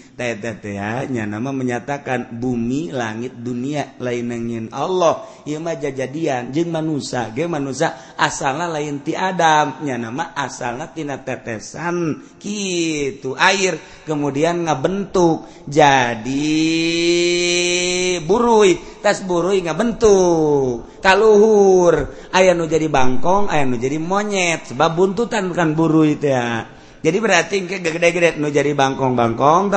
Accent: native